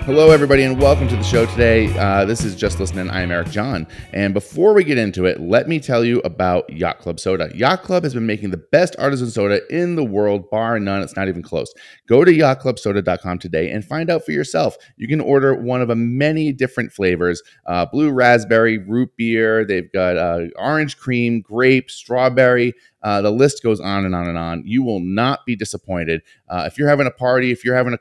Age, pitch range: 30-49, 95-125 Hz